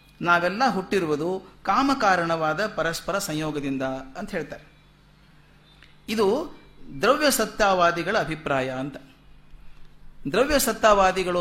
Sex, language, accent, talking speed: male, Kannada, native, 75 wpm